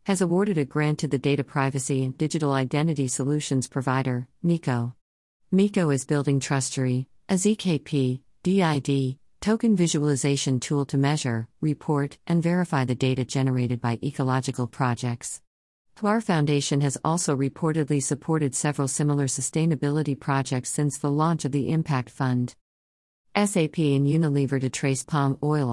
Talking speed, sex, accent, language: 140 wpm, female, American, English